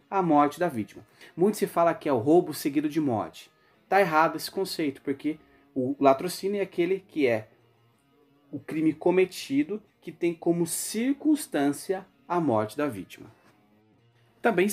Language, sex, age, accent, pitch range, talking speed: Portuguese, male, 30-49, Brazilian, 130-175 Hz, 150 wpm